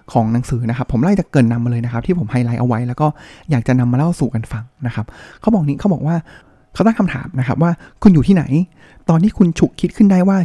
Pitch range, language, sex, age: 130-175 Hz, Thai, male, 20-39